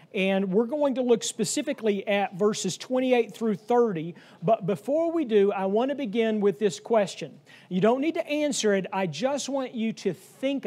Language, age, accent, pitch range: English, 40-59, American, 180-240 Hz